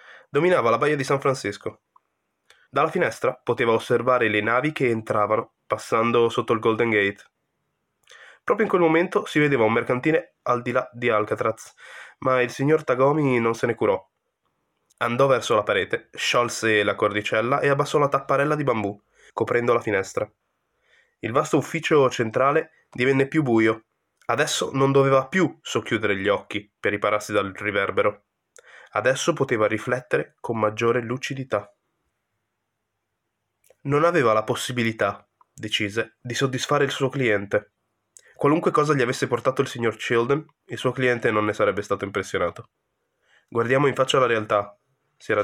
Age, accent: 20-39, native